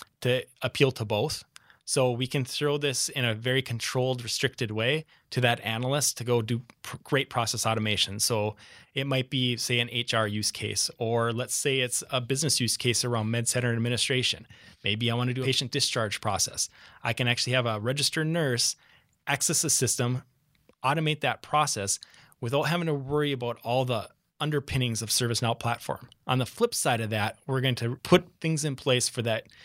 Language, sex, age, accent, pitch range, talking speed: English, male, 20-39, American, 115-135 Hz, 190 wpm